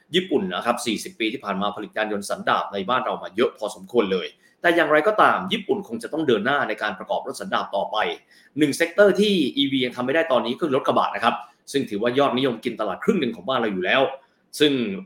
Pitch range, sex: 115-170 Hz, male